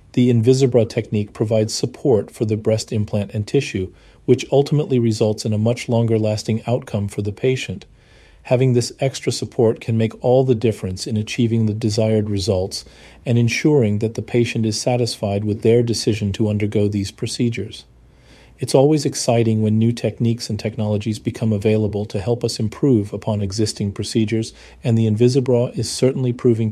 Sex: male